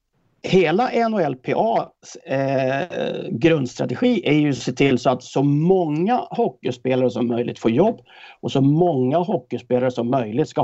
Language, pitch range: English, 125-185 Hz